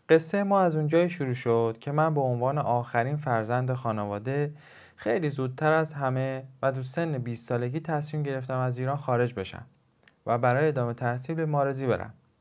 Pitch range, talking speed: 120-155 Hz, 170 wpm